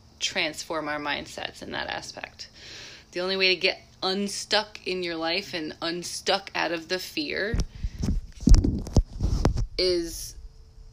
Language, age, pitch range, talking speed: English, 20-39, 145-180 Hz, 120 wpm